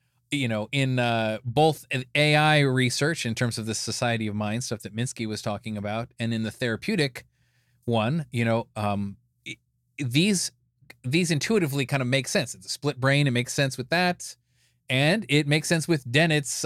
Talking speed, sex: 180 wpm, male